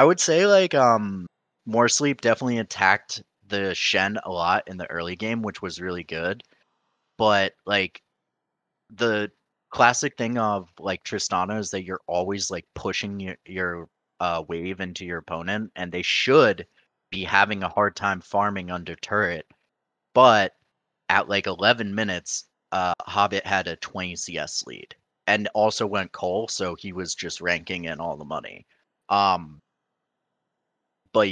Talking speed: 155 wpm